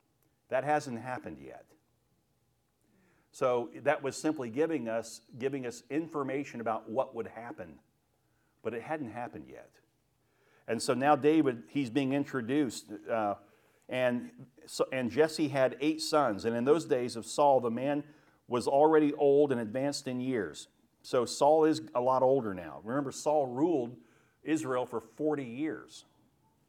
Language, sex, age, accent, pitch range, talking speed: English, male, 50-69, American, 115-145 Hz, 150 wpm